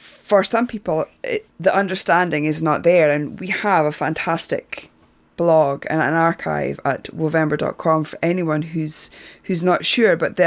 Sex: female